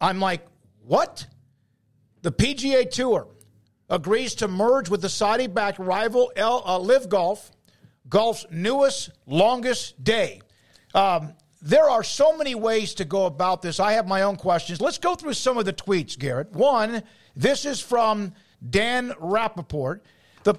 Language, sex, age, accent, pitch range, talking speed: English, male, 50-69, American, 185-240 Hz, 150 wpm